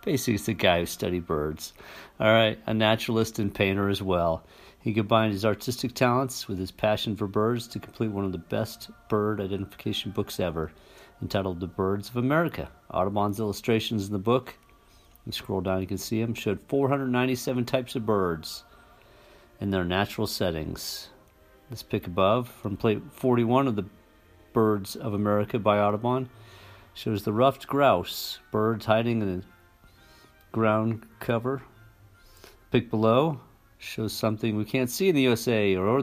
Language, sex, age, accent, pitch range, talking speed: English, male, 50-69, American, 95-115 Hz, 160 wpm